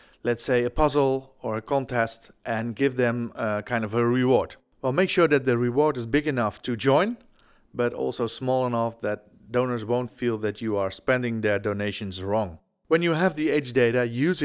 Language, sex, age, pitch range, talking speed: Dutch, male, 40-59, 115-135 Hz, 200 wpm